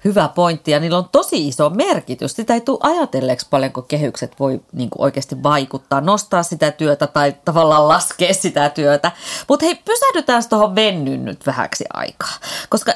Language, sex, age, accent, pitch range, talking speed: Finnish, female, 30-49, native, 160-235 Hz, 165 wpm